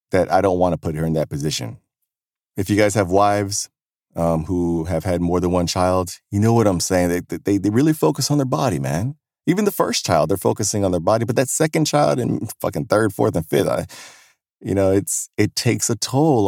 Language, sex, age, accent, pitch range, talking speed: English, male, 30-49, American, 95-130 Hz, 235 wpm